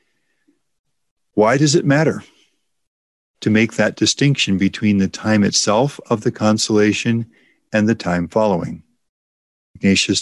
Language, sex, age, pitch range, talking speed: English, male, 50-69, 95-110 Hz, 115 wpm